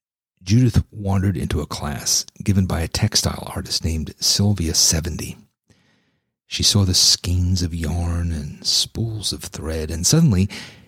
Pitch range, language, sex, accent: 90-110 Hz, English, male, American